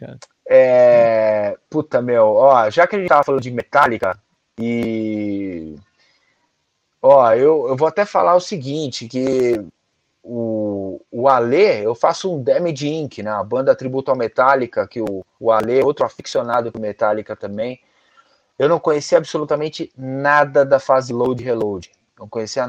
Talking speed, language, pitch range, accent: 145 wpm, Portuguese, 125-195 Hz, Brazilian